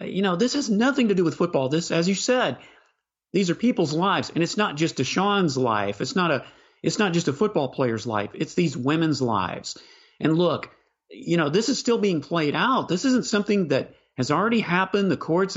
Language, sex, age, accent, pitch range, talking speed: English, male, 40-59, American, 135-195 Hz, 215 wpm